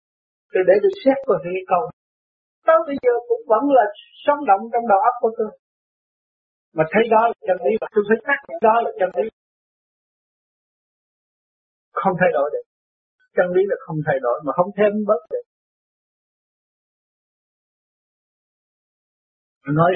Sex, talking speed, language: male, 145 wpm, Vietnamese